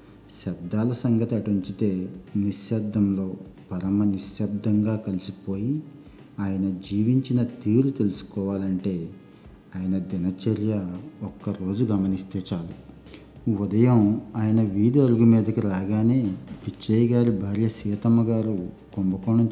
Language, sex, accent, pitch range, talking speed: Telugu, male, native, 100-115 Hz, 90 wpm